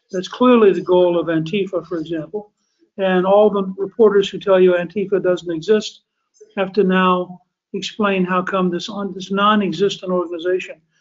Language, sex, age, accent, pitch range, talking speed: English, male, 60-79, American, 175-205 Hz, 155 wpm